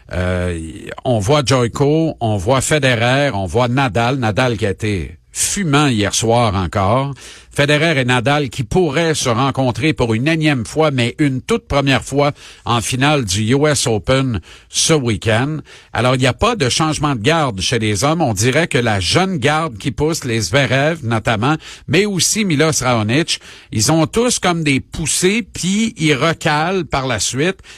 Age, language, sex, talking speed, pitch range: 50-69, French, male, 170 wpm, 120-160 Hz